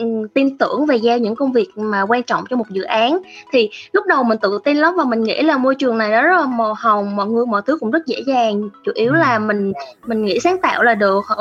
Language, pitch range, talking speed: Vietnamese, 225-315 Hz, 270 wpm